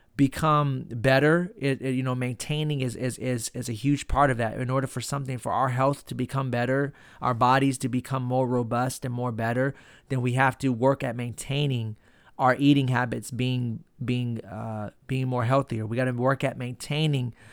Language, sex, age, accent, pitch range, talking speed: English, male, 30-49, American, 120-140 Hz, 195 wpm